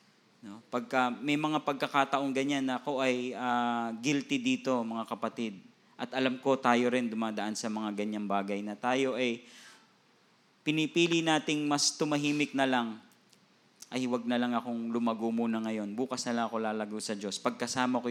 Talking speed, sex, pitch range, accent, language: 165 wpm, male, 115-150 Hz, native, Filipino